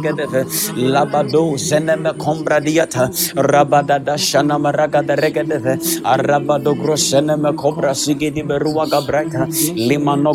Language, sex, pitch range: English, male, 145-160 Hz